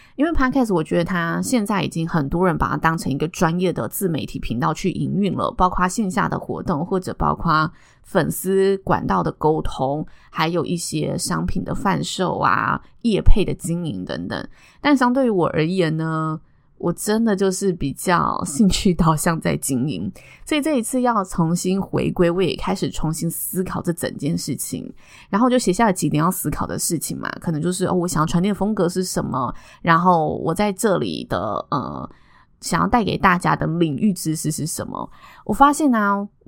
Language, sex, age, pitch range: Chinese, female, 20-39, 165-210 Hz